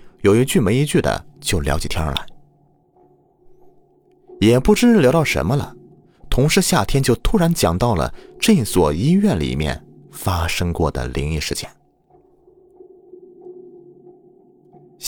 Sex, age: male, 30-49